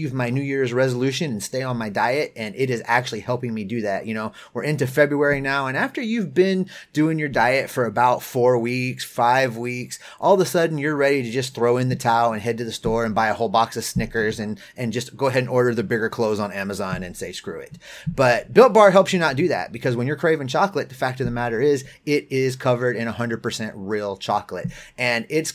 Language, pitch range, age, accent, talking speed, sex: English, 115-145 Hz, 30-49, American, 245 wpm, male